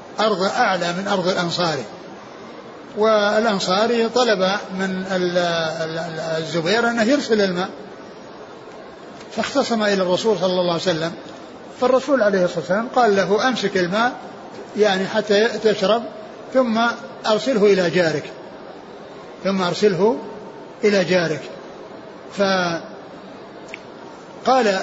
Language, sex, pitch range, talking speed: Arabic, male, 175-210 Hz, 95 wpm